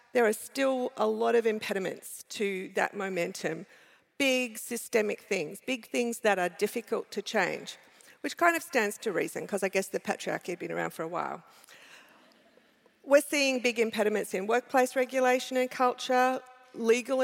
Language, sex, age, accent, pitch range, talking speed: English, female, 50-69, Australian, 205-250 Hz, 165 wpm